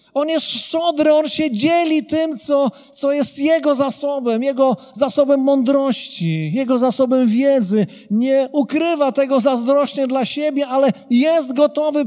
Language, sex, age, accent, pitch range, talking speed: Polish, male, 40-59, native, 210-280 Hz, 135 wpm